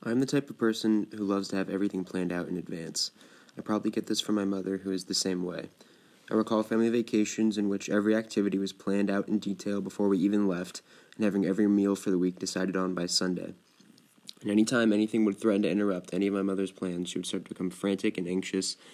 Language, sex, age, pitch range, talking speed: English, male, 20-39, 90-100 Hz, 240 wpm